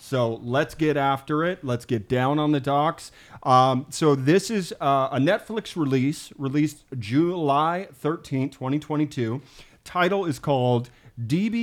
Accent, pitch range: American, 125-160 Hz